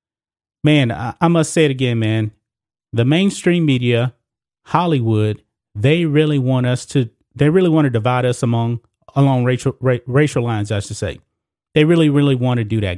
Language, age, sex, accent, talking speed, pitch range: English, 30-49, male, American, 170 wpm, 115-145 Hz